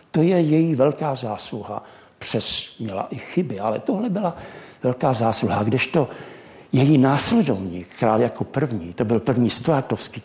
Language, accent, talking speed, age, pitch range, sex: Czech, native, 140 wpm, 60-79, 115-155 Hz, male